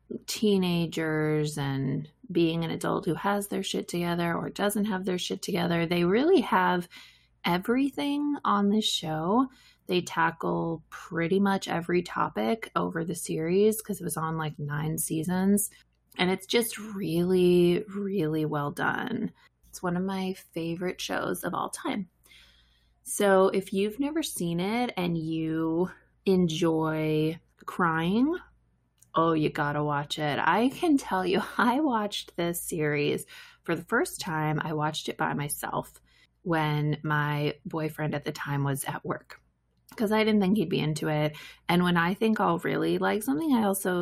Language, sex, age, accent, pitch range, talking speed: English, female, 20-39, American, 155-200 Hz, 155 wpm